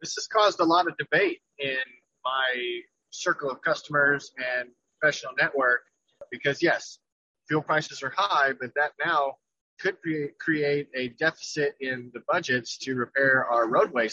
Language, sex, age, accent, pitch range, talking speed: English, male, 30-49, American, 135-180 Hz, 150 wpm